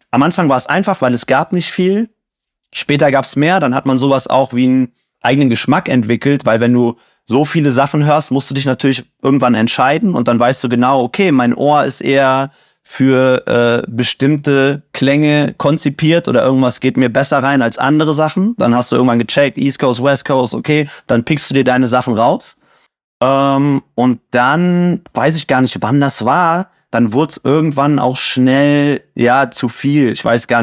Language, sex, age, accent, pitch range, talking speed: German, male, 30-49, German, 120-140 Hz, 195 wpm